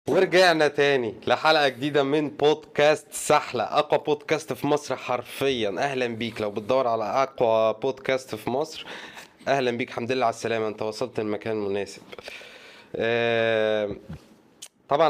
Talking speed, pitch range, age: 125 wpm, 105-130 Hz, 20-39